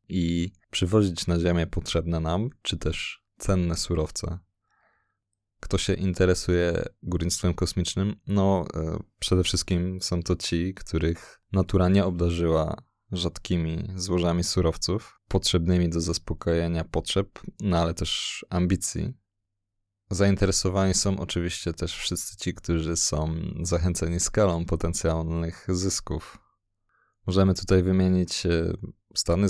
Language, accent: Polish, native